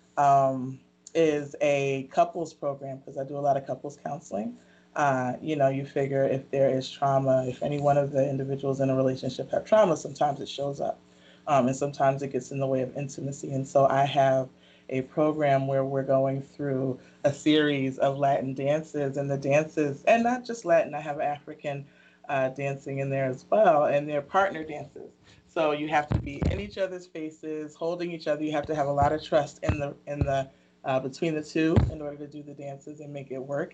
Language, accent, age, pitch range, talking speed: English, American, 30-49, 135-150 Hz, 215 wpm